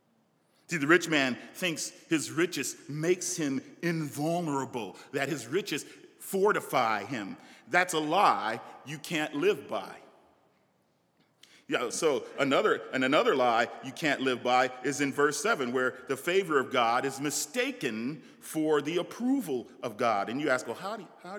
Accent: American